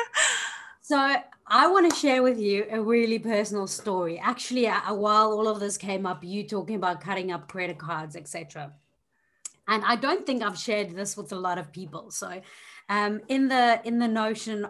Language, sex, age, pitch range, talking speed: English, female, 30-49, 180-230 Hz, 185 wpm